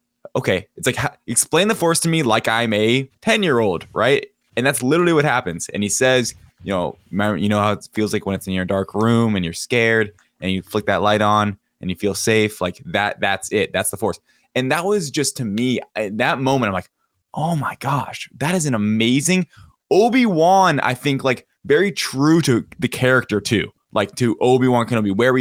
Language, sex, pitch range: English, male, 100-125 Hz